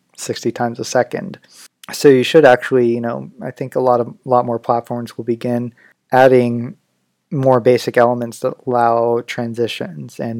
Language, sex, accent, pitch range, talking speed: English, male, American, 115-130 Hz, 160 wpm